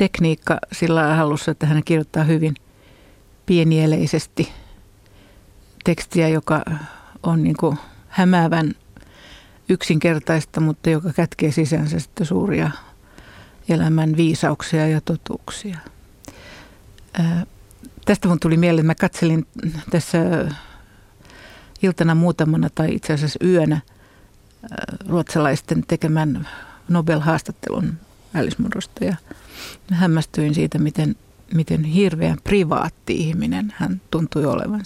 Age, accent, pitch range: 60-79, native, 150-175 Hz